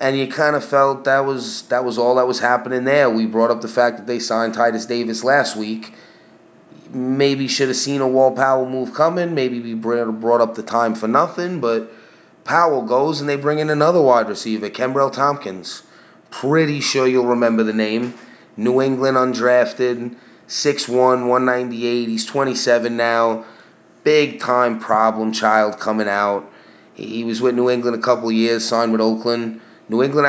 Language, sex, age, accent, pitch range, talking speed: English, male, 30-49, American, 115-130 Hz, 175 wpm